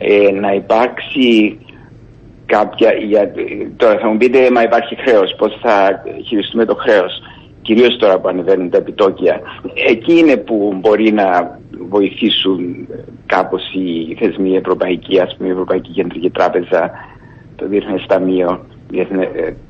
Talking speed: 125 wpm